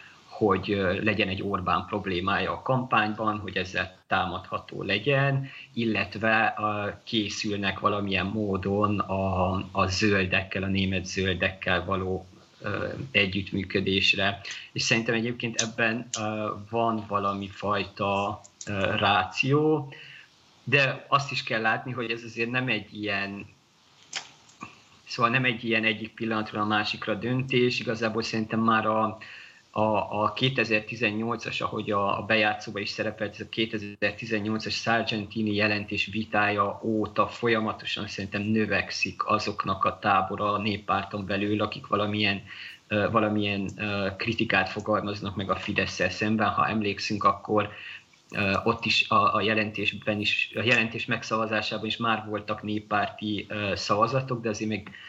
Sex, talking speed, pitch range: male, 110 wpm, 100-110 Hz